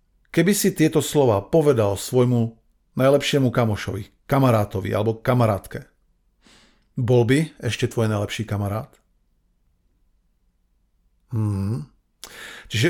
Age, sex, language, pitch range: 40-59, male, Slovak, 110-145 Hz